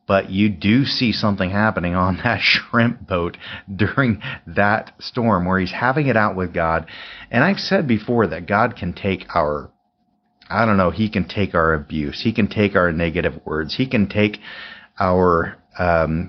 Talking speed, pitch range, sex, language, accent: 175 wpm, 85-110 Hz, male, English, American